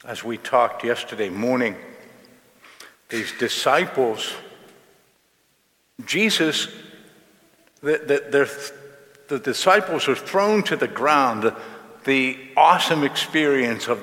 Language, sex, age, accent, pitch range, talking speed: English, male, 60-79, American, 120-155 Hz, 90 wpm